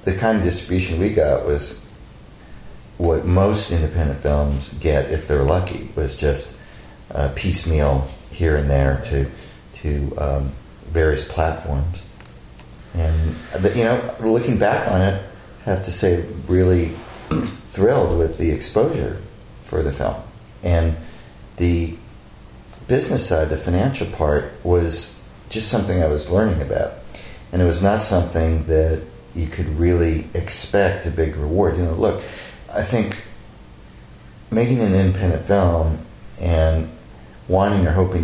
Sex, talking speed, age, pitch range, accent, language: male, 135 wpm, 40-59, 75-90 Hz, American, English